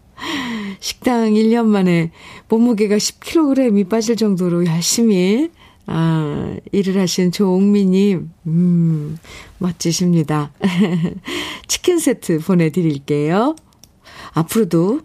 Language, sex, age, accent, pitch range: Korean, female, 50-69, native, 165-225 Hz